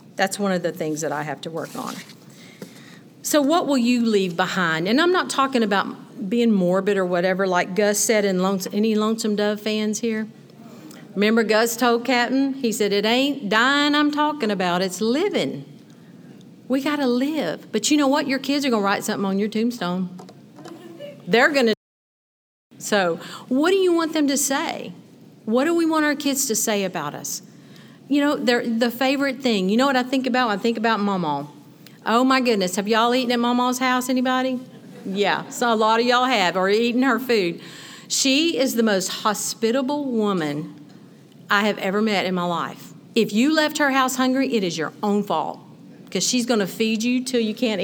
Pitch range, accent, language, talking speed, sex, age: 195-255 Hz, American, English, 195 wpm, female, 50-69